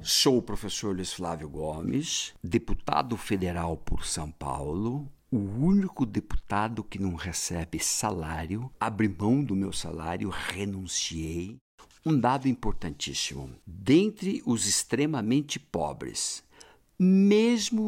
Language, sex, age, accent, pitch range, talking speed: Portuguese, male, 60-79, Brazilian, 95-130 Hz, 105 wpm